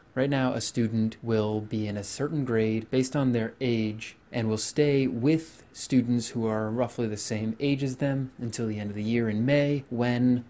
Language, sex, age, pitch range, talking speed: English, male, 30-49, 110-130 Hz, 205 wpm